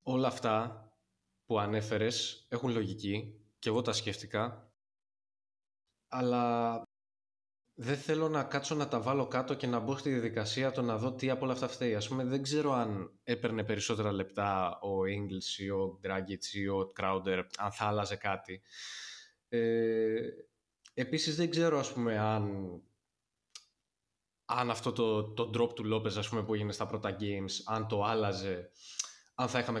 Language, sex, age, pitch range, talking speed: Greek, male, 20-39, 105-130 Hz, 160 wpm